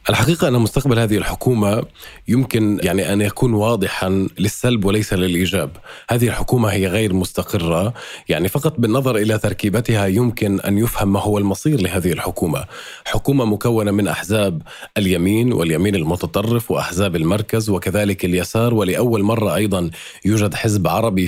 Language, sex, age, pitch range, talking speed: Arabic, male, 30-49, 95-115 Hz, 135 wpm